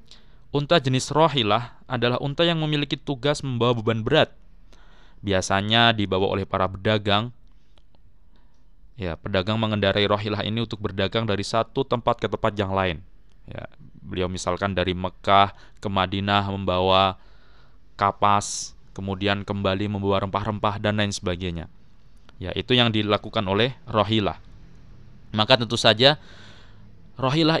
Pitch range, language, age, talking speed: 95-120 Hz, Indonesian, 20-39, 120 wpm